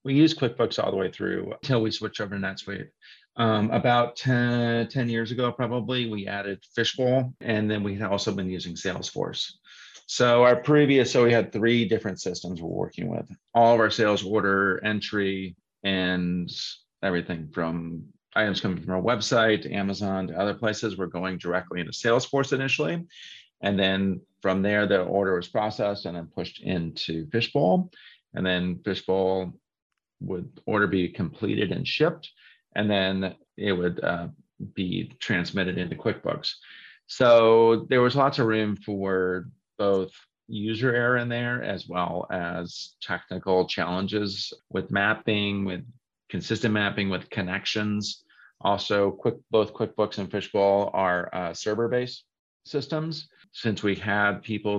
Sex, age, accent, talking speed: male, 40-59, American, 150 wpm